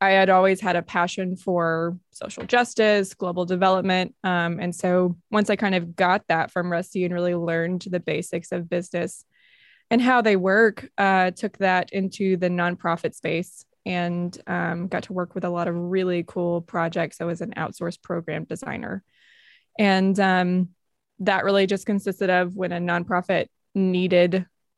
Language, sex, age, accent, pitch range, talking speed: English, female, 20-39, American, 175-200 Hz, 170 wpm